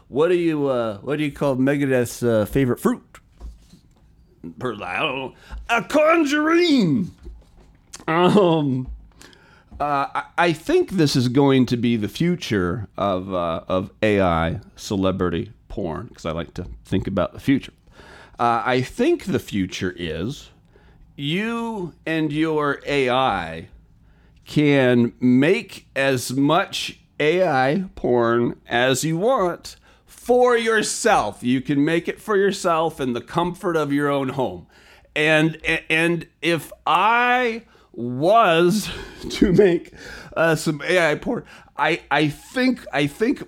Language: English